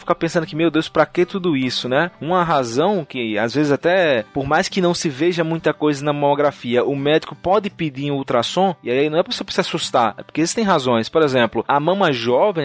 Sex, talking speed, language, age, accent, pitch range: male, 230 wpm, Portuguese, 20-39, Brazilian, 150-195 Hz